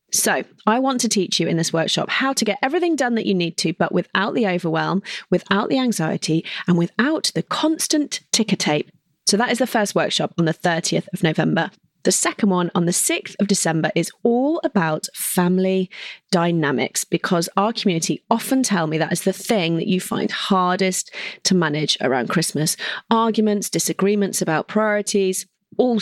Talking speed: 180 wpm